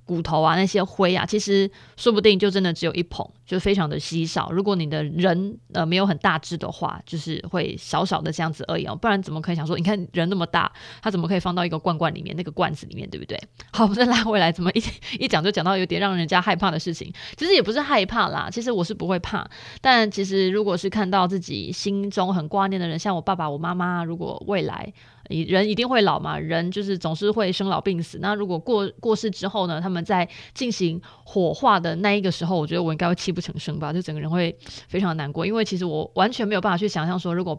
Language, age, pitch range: Chinese, 20-39, 170-210 Hz